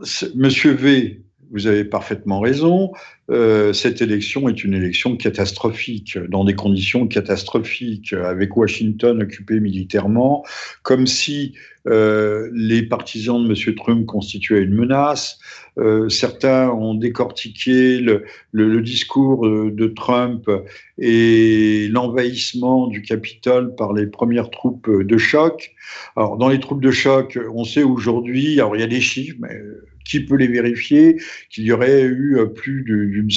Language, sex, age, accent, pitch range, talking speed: French, male, 50-69, French, 110-140 Hz, 140 wpm